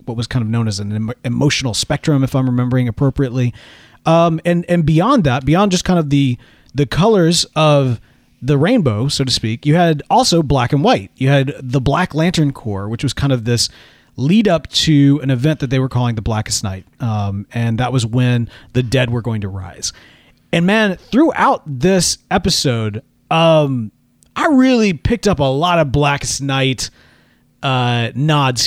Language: English